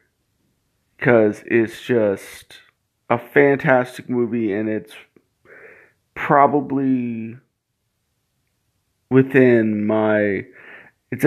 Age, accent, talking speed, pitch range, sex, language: 30-49, American, 65 wpm, 110-135 Hz, male, English